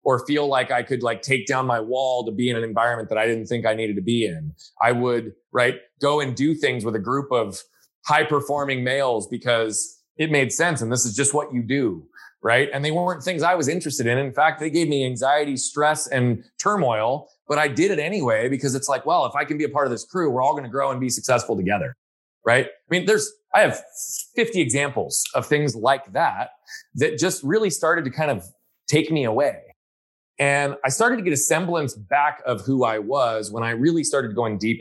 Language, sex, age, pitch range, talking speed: English, male, 20-39, 115-145 Hz, 230 wpm